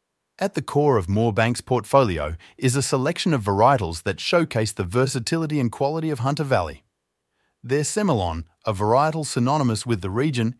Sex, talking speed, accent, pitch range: male, 160 wpm, Australian, 110-145 Hz